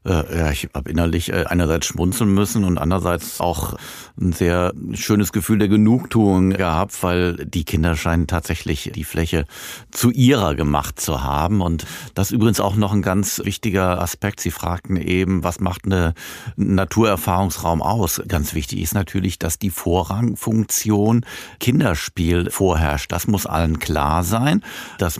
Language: German